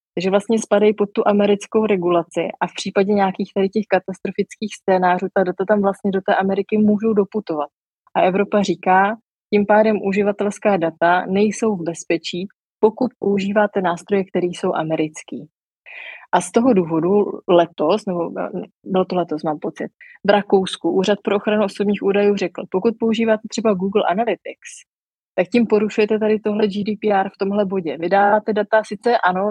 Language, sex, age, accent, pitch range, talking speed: Czech, female, 20-39, native, 175-205 Hz, 155 wpm